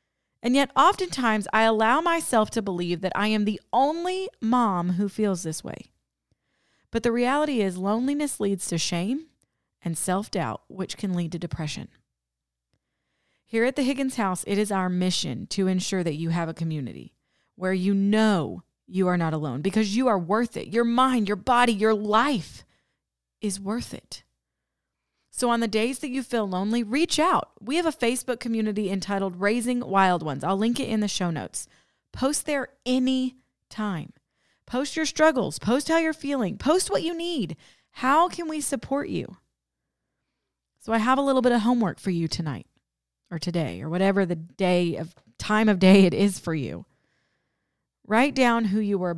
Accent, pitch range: American, 175-250 Hz